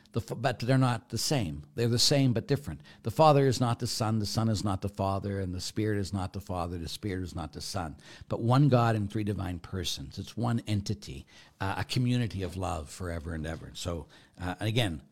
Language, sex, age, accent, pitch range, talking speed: English, male, 60-79, American, 90-125 Hz, 225 wpm